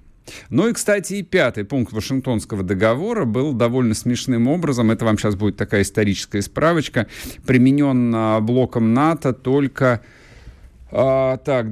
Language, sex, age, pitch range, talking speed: Russian, male, 50-69, 90-130 Hz, 130 wpm